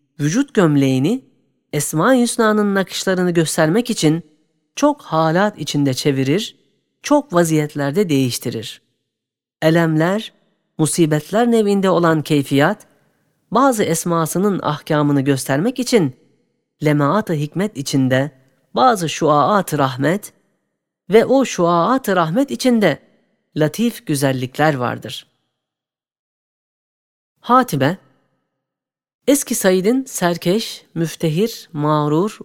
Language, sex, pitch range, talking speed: Turkish, female, 145-205 Hz, 80 wpm